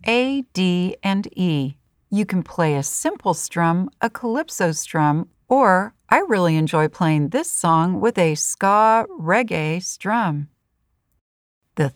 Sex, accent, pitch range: female, American, 170-260 Hz